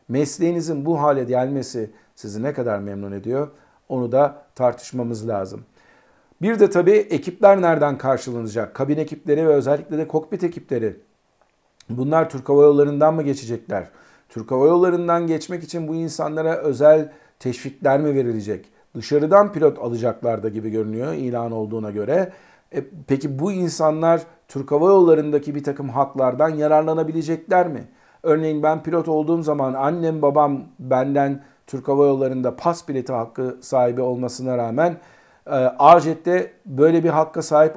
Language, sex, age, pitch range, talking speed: Turkish, male, 50-69, 130-160 Hz, 140 wpm